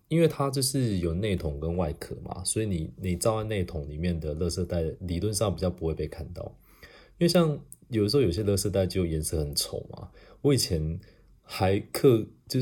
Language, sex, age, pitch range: Chinese, male, 30-49, 80-115 Hz